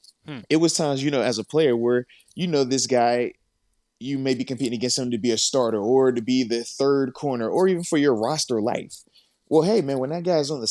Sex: male